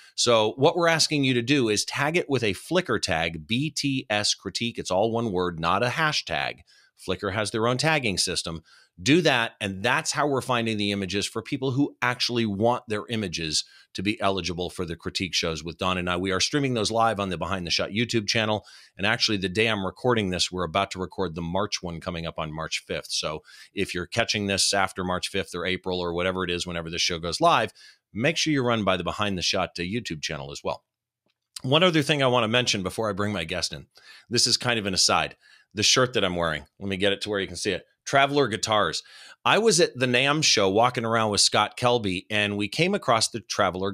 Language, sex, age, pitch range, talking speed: English, male, 40-59, 90-120 Hz, 235 wpm